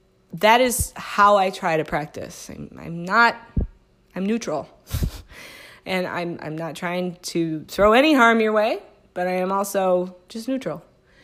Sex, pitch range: female, 175-230 Hz